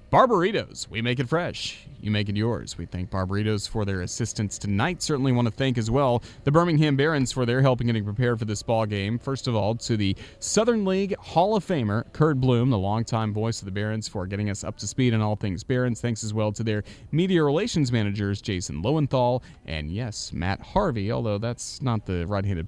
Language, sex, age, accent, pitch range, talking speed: English, male, 30-49, American, 105-140 Hz, 215 wpm